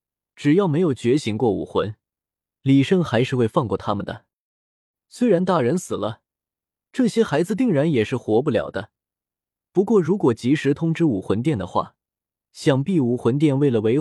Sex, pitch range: male, 110-170 Hz